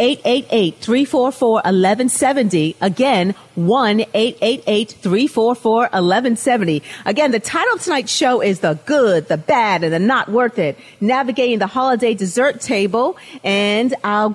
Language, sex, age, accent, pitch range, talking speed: English, female, 40-59, American, 185-250 Hz, 110 wpm